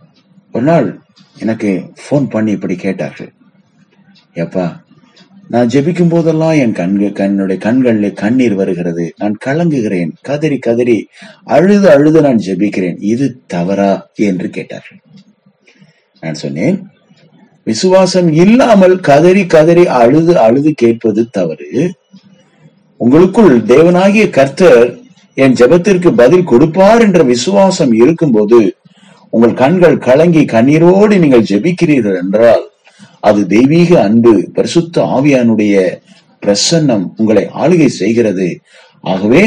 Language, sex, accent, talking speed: Tamil, male, native, 85 wpm